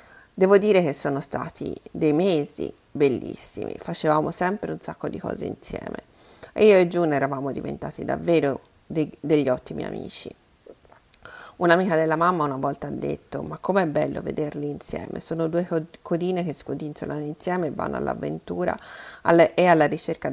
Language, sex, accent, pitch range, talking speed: Italian, female, native, 145-180 Hz, 145 wpm